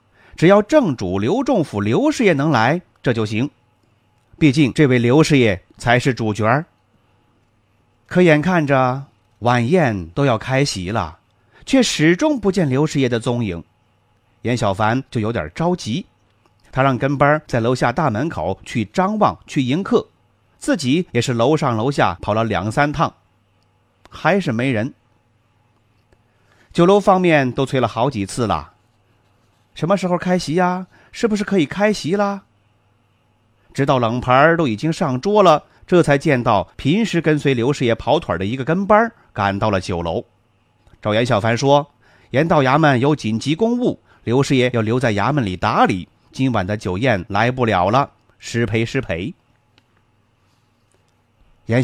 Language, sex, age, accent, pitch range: Chinese, male, 30-49, native, 105-150 Hz